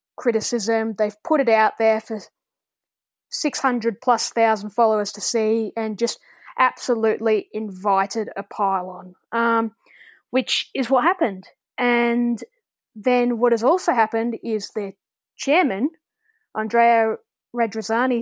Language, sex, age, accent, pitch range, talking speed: English, female, 10-29, Australian, 220-265 Hz, 120 wpm